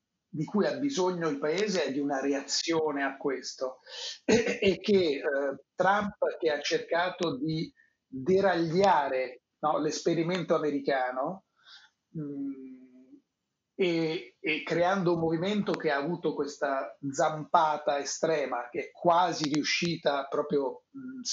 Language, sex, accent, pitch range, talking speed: Italian, male, native, 140-180 Hz, 120 wpm